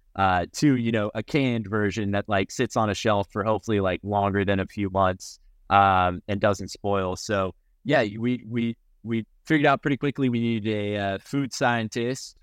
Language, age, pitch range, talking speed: English, 30-49, 95-115 Hz, 195 wpm